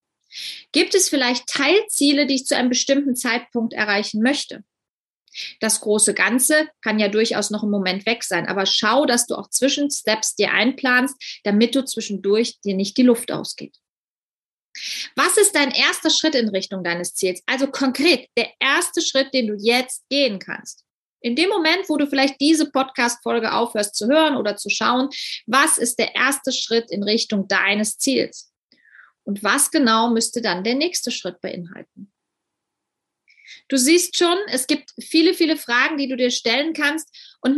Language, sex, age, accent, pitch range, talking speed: German, female, 30-49, German, 225-285 Hz, 165 wpm